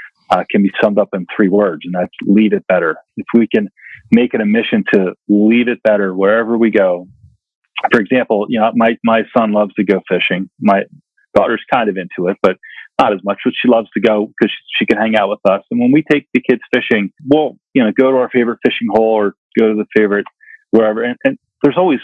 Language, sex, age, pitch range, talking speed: English, male, 40-59, 105-120 Hz, 235 wpm